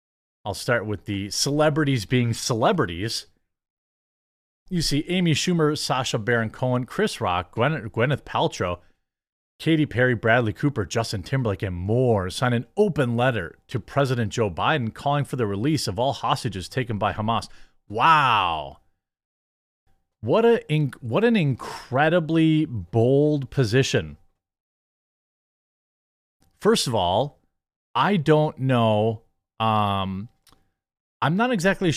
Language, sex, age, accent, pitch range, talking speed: English, male, 30-49, American, 105-150 Hz, 120 wpm